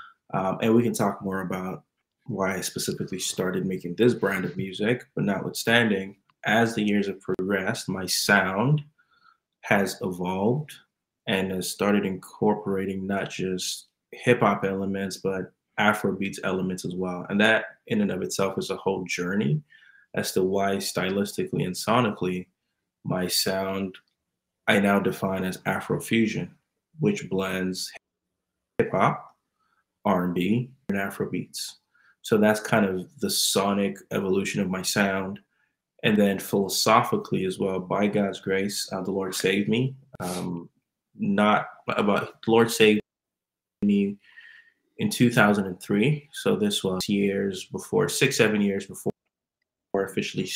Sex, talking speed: male, 135 wpm